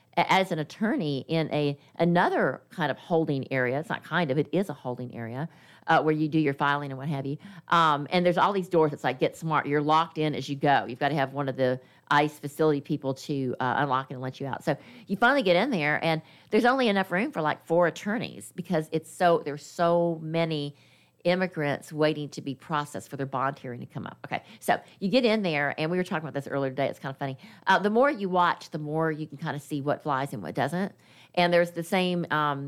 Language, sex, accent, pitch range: English, female, American, 140-175 Hz